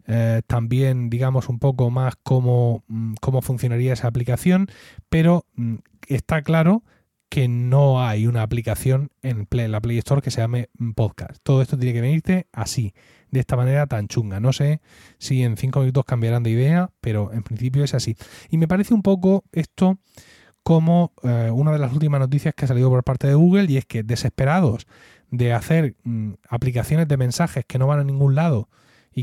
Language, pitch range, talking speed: Spanish, 120-155 Hz, 185 wpm